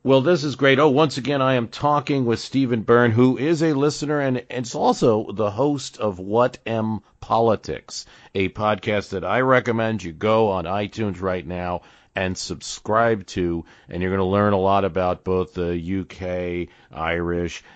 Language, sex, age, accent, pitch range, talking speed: English, male, 50-69, American, 85-110 Hz, 175 wpm